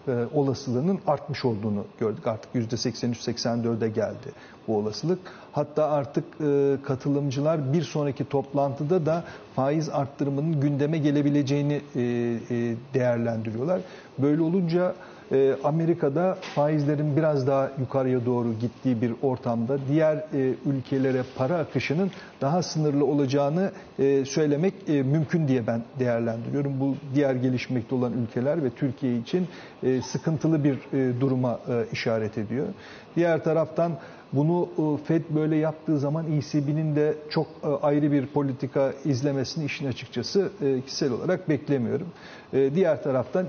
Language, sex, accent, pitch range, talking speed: Turkish, male, native, 130-155 Hz, 110 wpm